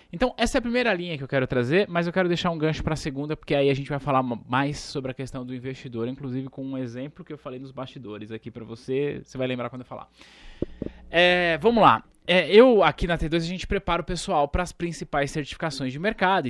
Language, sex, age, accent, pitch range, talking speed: Portuguese, male, 20-39, Brazilian, 125-175 Hz, 240 wpm